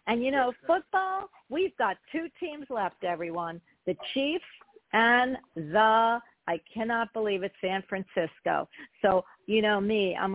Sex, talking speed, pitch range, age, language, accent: female, 145 wpm, 180-225 Hz, 50-69, English, American